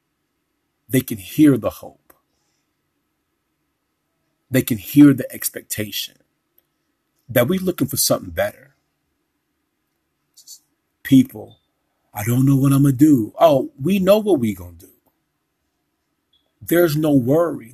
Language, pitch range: English, 130-170 Hz